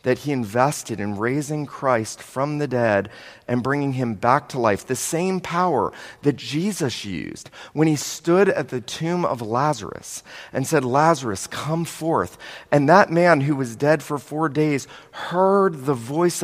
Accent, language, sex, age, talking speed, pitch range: American, English, male, 40-59, 170 wpm, 145-170 Hz